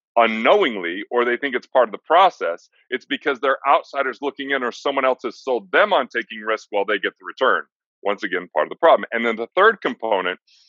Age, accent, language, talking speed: 30-49, American, English, 225 wpm